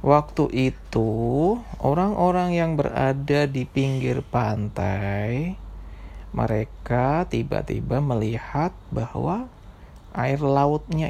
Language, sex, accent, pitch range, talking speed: Indonesian, male, native, 100-145 Hz, 75 wpm